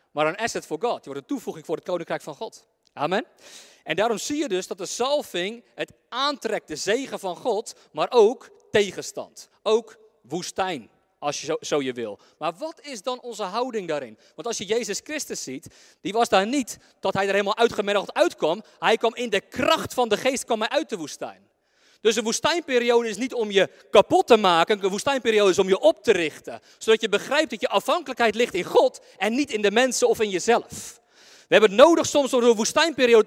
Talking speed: 215 wpm